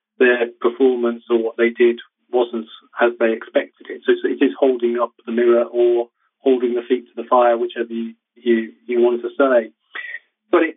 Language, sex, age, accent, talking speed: English, male, 40-59, British, 190 wpm